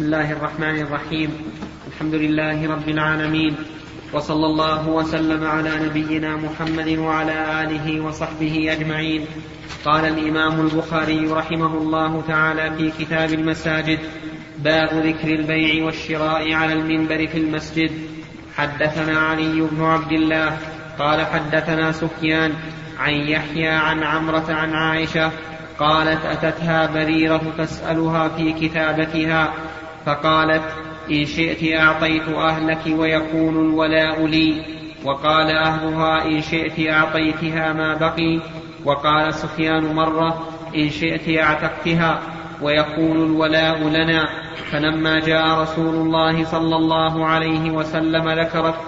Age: 30-49